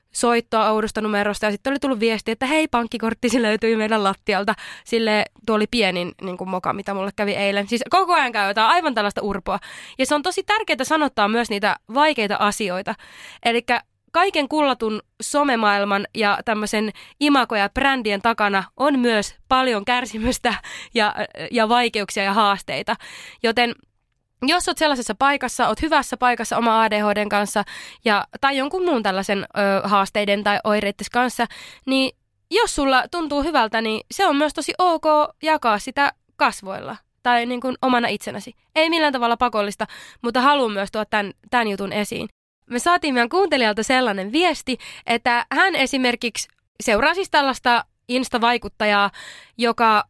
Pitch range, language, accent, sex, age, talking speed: 210-275 Hz, Finnish, native, female, 20-39, 150 wpm